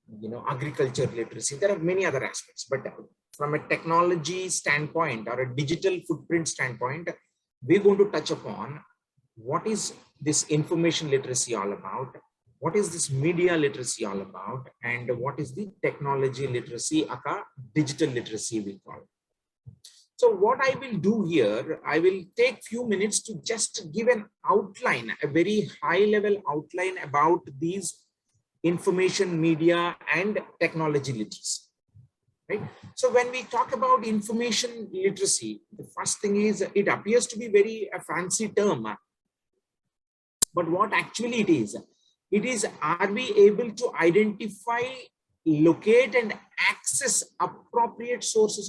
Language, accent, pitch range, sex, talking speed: English, Indian, 145-220 Hz, male, 140 wpm